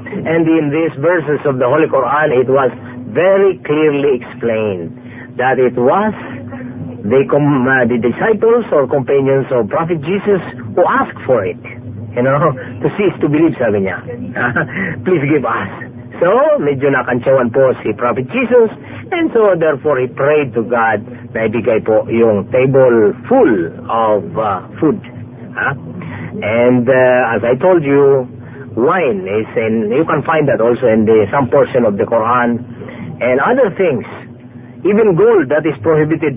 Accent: native